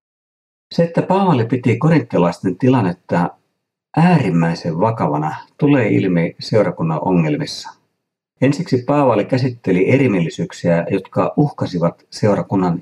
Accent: native